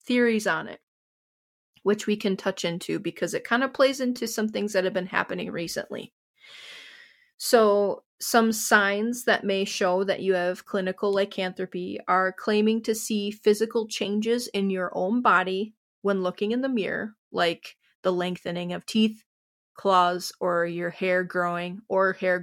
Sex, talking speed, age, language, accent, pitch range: female, 160 wpm, 30-49, English, American, 180-215 Hz